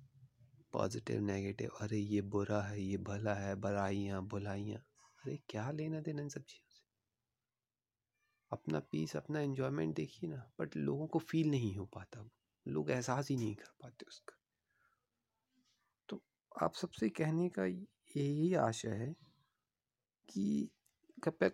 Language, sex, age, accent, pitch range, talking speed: Hindi, male, 30-49, native, 100-130 Hz, 135 wpm